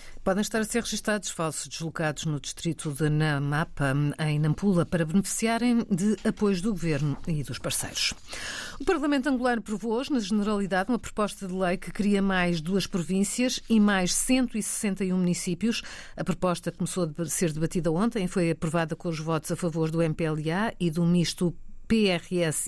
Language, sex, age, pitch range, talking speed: Portuguese, female, 50-69, 165-215 Hz, 165 wpm